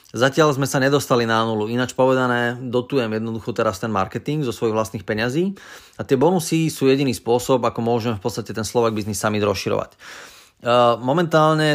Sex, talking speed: male, 170 wpm